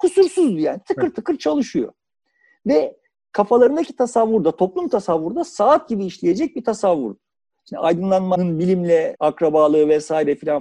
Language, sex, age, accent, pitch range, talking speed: Turkish, male, 50-69, native, 170-285 Hz, 120 wpm